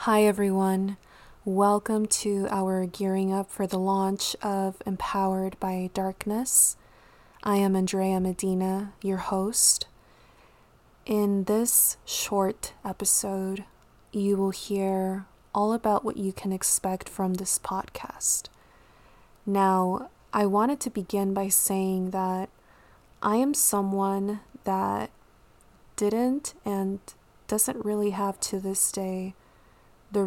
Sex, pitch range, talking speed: female, 190-205 Hz, 115 wpm